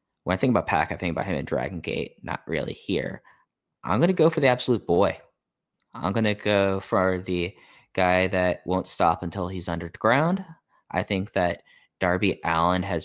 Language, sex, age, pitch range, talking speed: English, male, 10-29, 85-100 Hz, 195 wpm